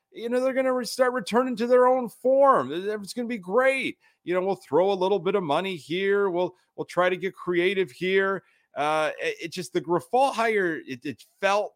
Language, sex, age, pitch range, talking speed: English, male, 30-49, 120-175 Hz, 220 wpm